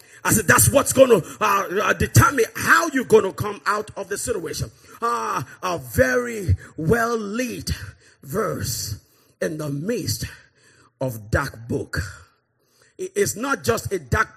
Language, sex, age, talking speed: English, male, 40-59, 140 wpm